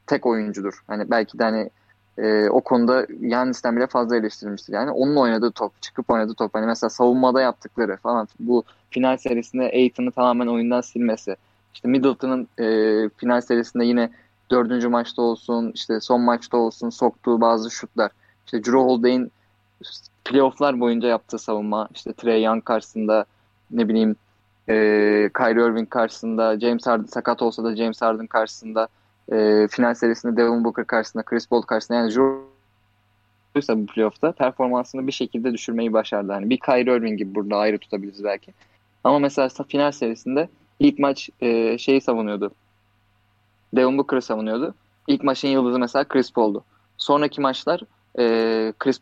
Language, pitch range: Turkish, 110-125 Hz